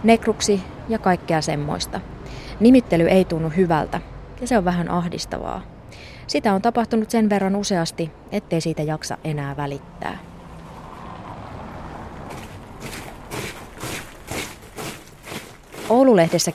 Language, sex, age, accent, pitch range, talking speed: Finnish, female, 20-39, native, 160-200 Hz, 90 wpm